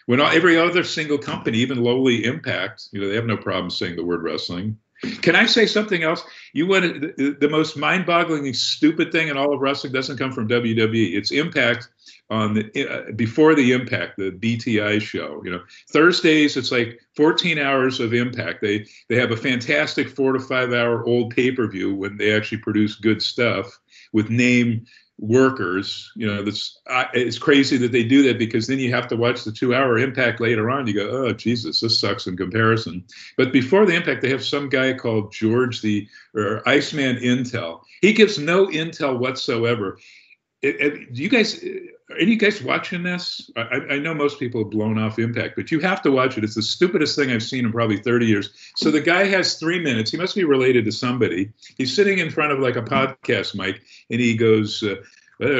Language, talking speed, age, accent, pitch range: English, 205 wpm, 50-69, American, 110-155 Hz